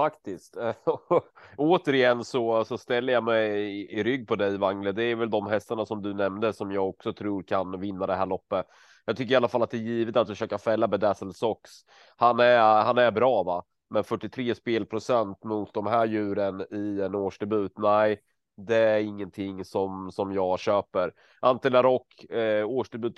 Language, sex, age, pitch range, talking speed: Swedish, male, 30-49, 100-115 Hz, 185 wpm